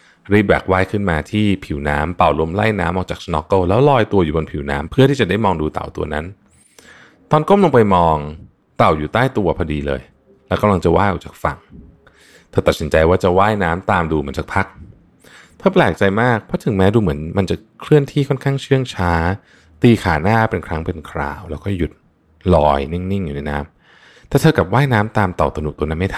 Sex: male